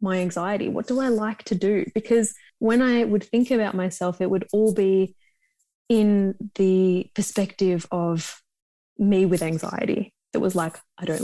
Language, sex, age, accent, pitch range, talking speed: English, female, 20-39, Australian, 185-230 Hz, 165 wpm